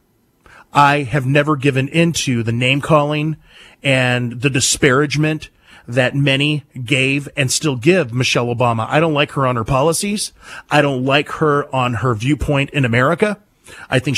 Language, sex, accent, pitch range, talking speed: English, male, American, 130-170 Hz, 150 wpm